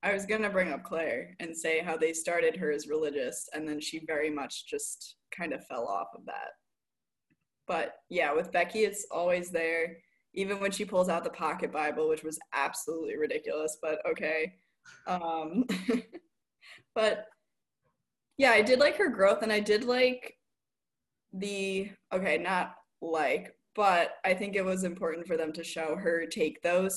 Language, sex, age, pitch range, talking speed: English, female, 20-39, 165-220 Hz, 170 wpm